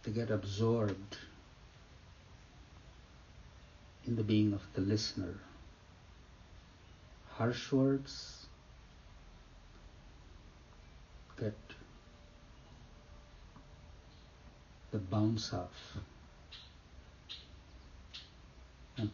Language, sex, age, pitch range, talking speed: English, male, 60-79, 75-110 Hz, 50 wpm